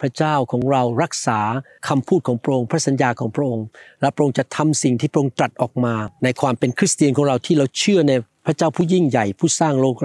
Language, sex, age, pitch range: Thai, male, 60-79, 125-155 Hz